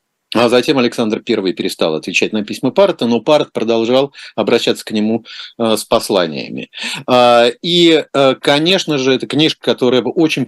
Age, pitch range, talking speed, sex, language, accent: 40-59, 110-135 Hz, 135 wpm, male, Russian, native